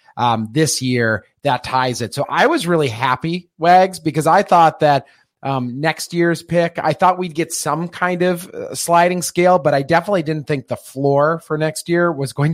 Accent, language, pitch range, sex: American, English, 140-165 Hz, male